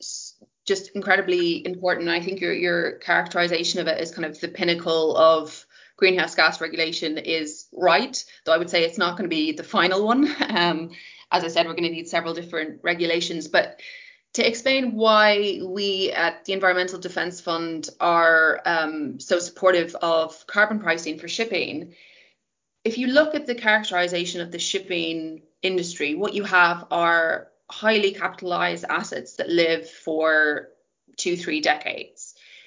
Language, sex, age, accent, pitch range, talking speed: English, female, 20-39, Irish, 165-205 Hz, 160 wpm